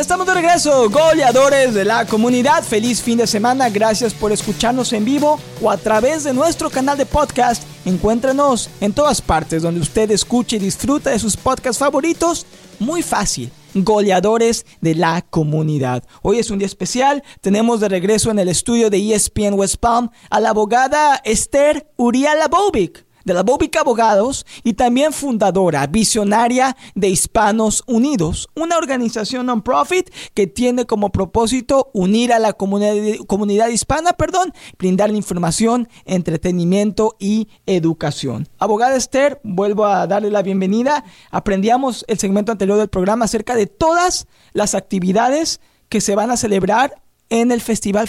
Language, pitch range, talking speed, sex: Spanish, 200-265 Hz, 150 wpm, male